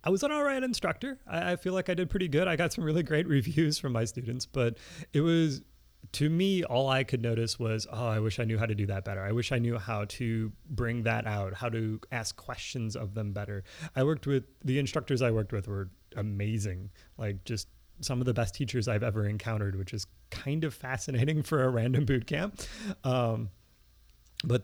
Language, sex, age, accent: English, male, 30-49, American